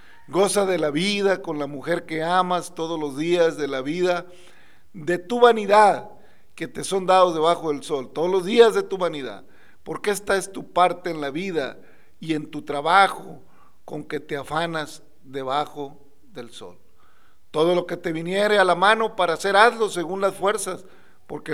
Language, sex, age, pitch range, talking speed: Spanish, male, 50-69, 150-190 Hz, 180 wpm